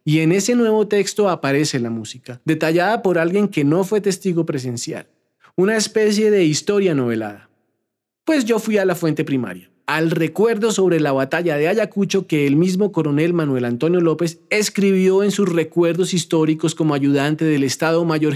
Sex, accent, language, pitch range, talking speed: male, Colombian, Spanish, 145-200 Hz, 170 wpm